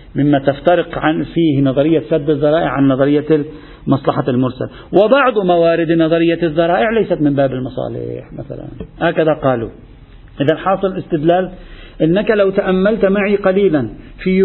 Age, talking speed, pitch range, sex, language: 50-69, 130 wpm, 135-190 Hz, male, Arabic